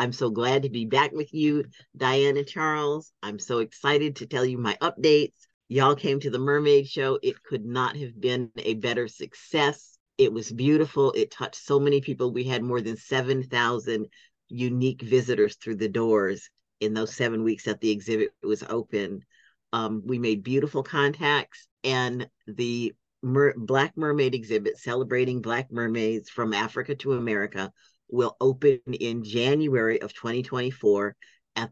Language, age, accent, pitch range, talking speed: English, 50-69, American, 115-140 Hz, 160 wpm